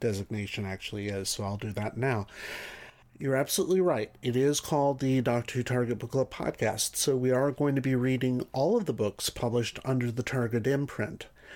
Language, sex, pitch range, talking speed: English, male, 110-135 Hz, 190 wpm